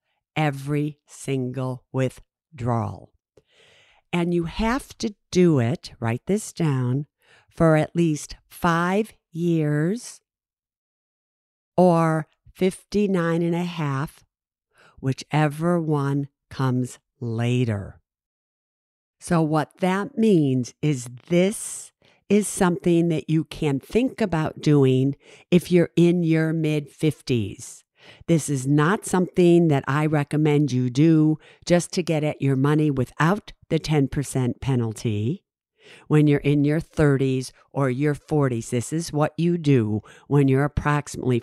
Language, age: English, 50-69